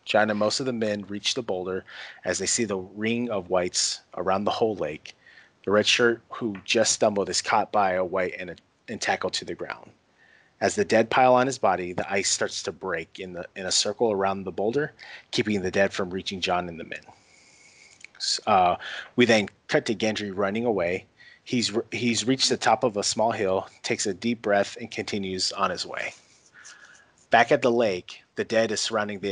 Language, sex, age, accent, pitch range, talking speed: English, male, 30-49, American, 95-115 Hz, 205 wpm